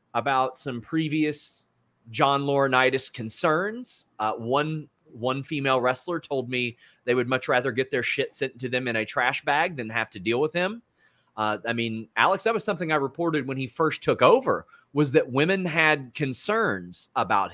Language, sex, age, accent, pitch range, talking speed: English, male, 30-49, American, 120-160 Hz, 180 wpm